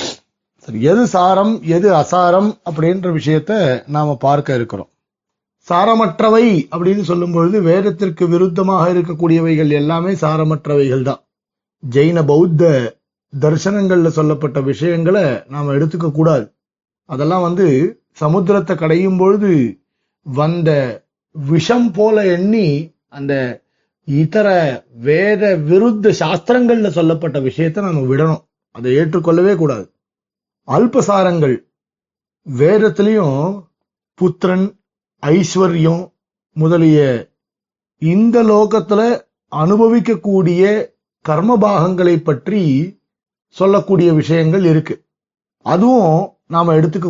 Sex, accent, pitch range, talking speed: male, native, 155-200 Hz, 80 wpm